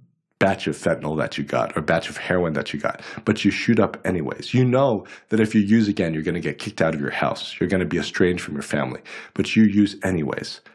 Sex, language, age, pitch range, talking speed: male, English, 40-59, 90-115 Hz, 255 wpm